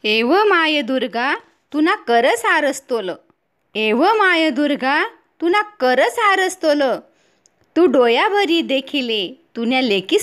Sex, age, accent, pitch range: female, 20-39, native, 260-355 Hz